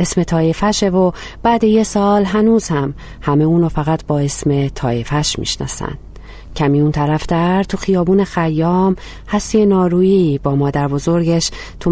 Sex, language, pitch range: female, Persian, 140-180 Hz